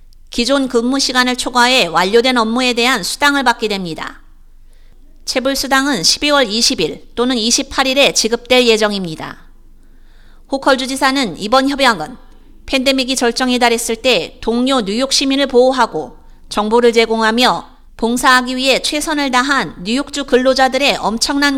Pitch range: 235-275 Hz